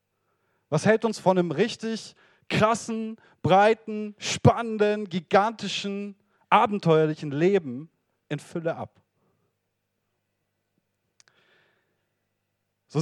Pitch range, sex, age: 125-190 Hz, male, 40-59